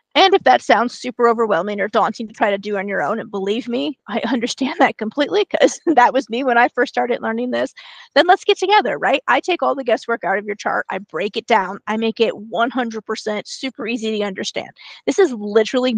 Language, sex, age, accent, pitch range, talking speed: English, female, 30-49, American, 215-260 Hz, 230 wpm